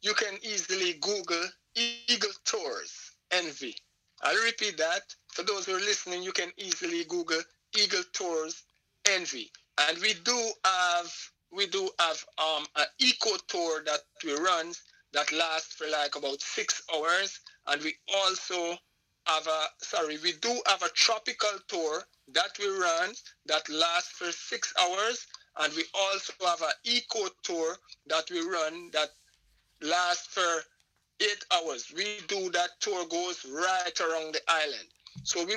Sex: male